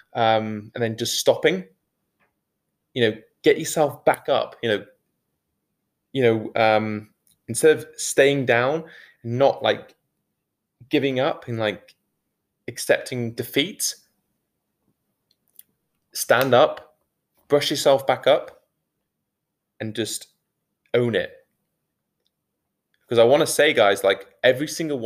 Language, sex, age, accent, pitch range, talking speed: English, male, 20-39, British, 110-145 Hz, 115 wpm